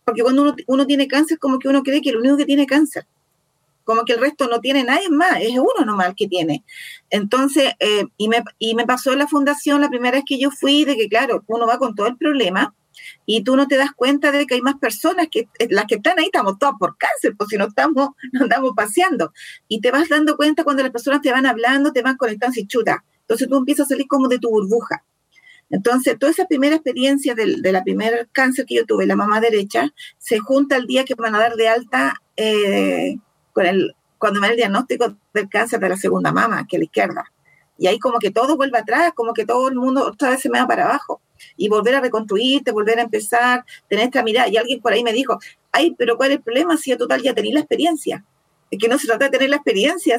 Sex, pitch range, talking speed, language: female, 230-285 Hz, 245 wpm, Spanish